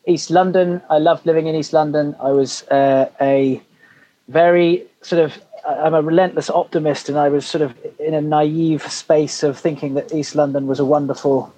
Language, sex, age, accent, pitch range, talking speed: English, male, 30-49, British, 135-160 Hz, 185 wpm